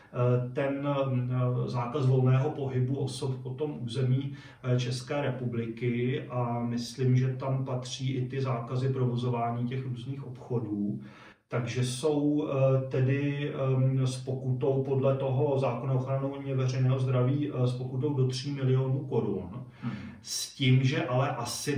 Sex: male